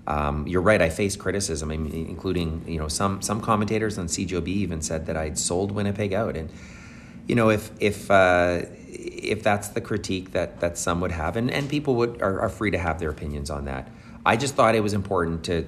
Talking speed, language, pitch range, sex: 215 wpm, English, 80-100 Hz, male